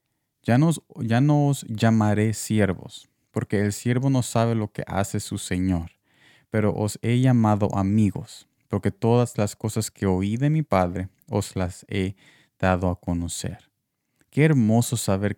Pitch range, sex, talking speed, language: 100-130 Hz, male, 150 wpm, Spanish